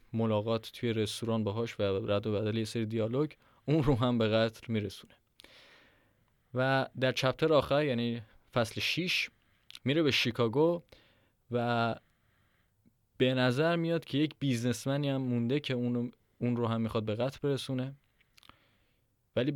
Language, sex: Persian, male